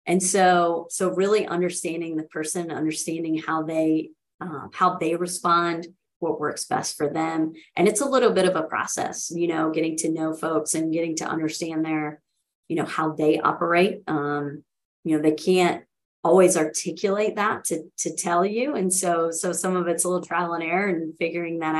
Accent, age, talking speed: American, 30-49, 190 wpm